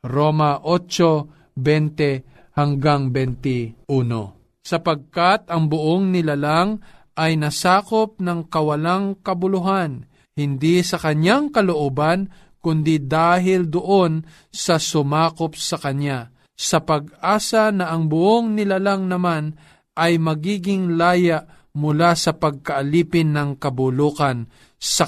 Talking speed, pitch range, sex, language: 90 wpm, 135-180 Hz, male, Filipino